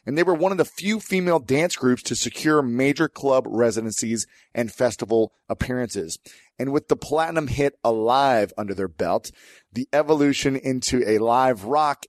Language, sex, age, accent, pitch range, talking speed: English, male, 30-49, American, 110-135 Hz, 165 wpm